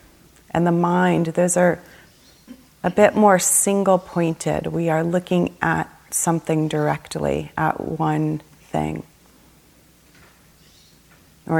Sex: female